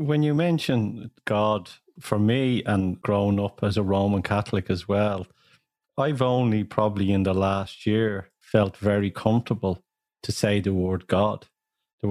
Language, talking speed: English, 155 wpm